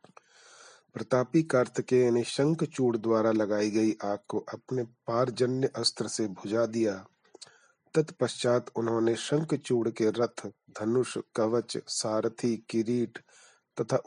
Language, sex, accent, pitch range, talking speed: Hindi, male, native, 110-135 Hz, 105 wpm